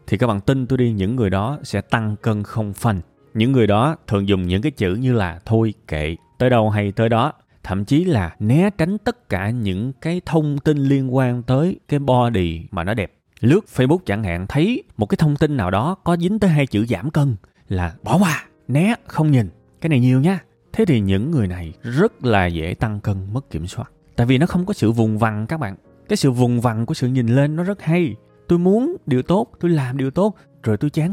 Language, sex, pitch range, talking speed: Vietnamese, male, 105-155 Hz, 235 wpm